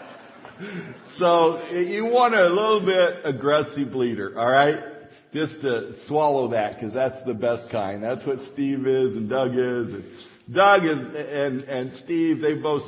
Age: 50-69